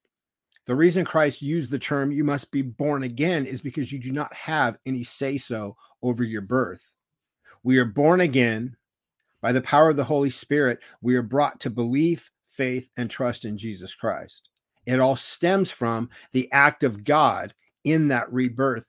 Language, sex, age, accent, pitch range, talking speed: English, male, 50-69, American, 125-150 Hz, 175 wpm